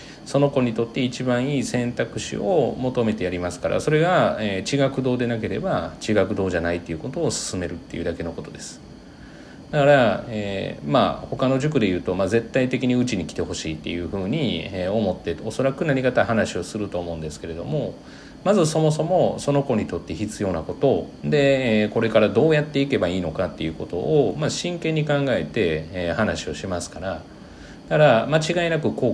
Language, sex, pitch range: Japanese, male, 95-135 Hz